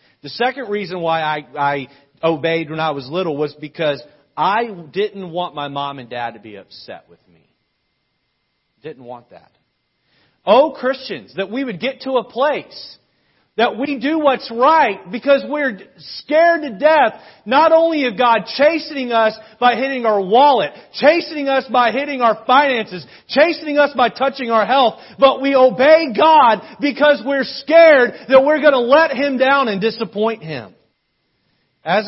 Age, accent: 40-59, American